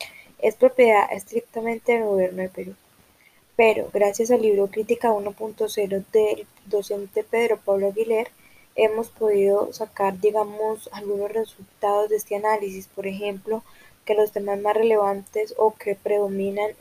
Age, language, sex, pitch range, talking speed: 10-29, Spanish, female, 200-220 Hz, 130 wpm